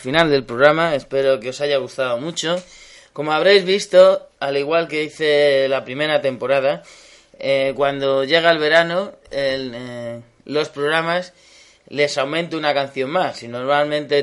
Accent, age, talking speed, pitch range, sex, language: Spanish, 20-39, 150 wpm, 135-165 Hz, male, Spanish